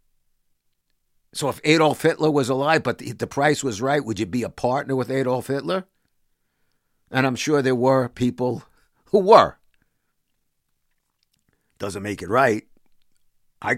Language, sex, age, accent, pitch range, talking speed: English, male, 50-69, American, 120-155 Hz, 145 wpm